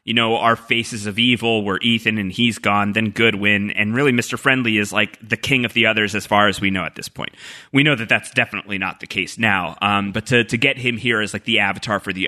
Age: 30-49